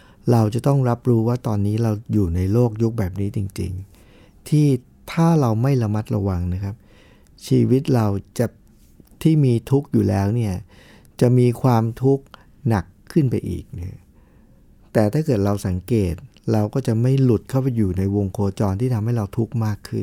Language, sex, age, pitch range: Thai, male, 60-79, 100-130 Hz